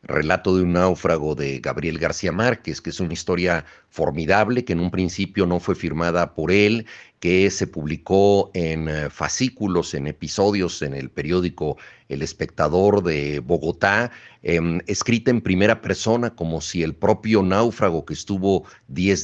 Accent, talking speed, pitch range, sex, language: Mexican, 155 wpm, 85-100 Hz, male, Spanish